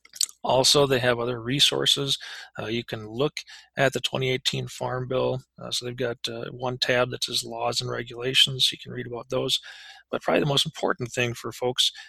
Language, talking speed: English, 195 wpm